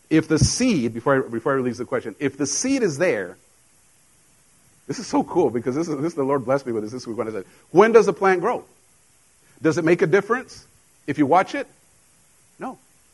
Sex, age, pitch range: male, 50-69, 150-210 Hz